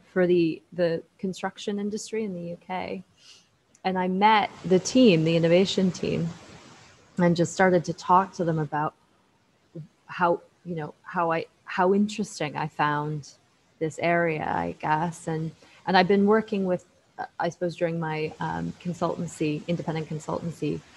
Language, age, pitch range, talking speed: English, 20-39, 160-190 Hz, 145 wpm